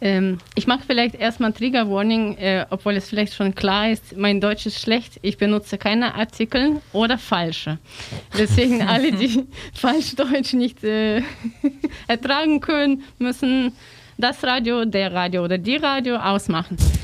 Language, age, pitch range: German, 20-39, 215-255 Hz